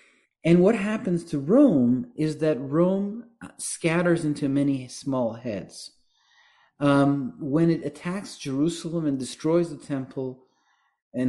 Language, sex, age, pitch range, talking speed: English, male, 40-59, 125-165 Hz, 120 wpm